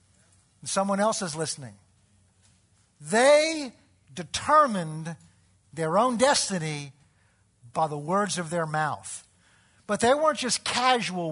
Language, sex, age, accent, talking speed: English, male, 50-69, American, 105 wpm